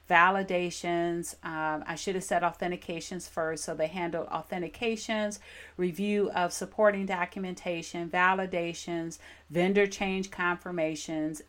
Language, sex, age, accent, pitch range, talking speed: English, female, 40-59, American, 165-200 Hz, 105 wpm